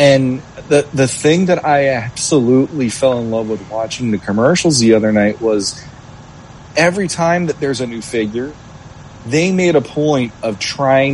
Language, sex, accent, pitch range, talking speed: English, male, American, 120-165 Hz, 165 wpm